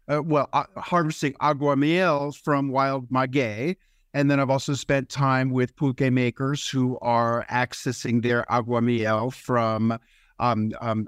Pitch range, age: 125-150 Hz, 50-69